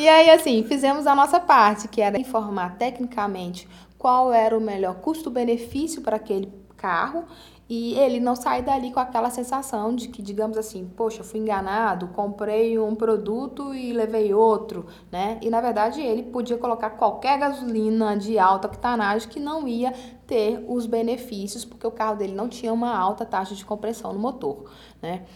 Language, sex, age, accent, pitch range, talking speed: Portuguese, female, 20-39, Brazilian, 210-250 Hz, 175 wpm